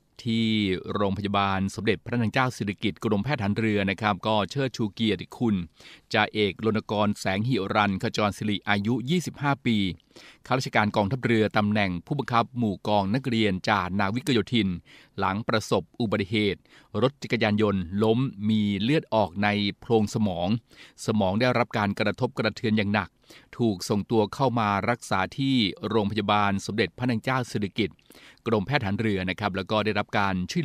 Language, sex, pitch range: Thai, male, 100-115 Hz